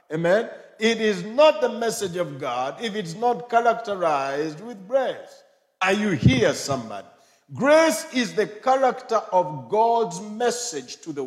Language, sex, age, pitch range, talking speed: English, male, 50-69, 160-245 Hz, 145 wpm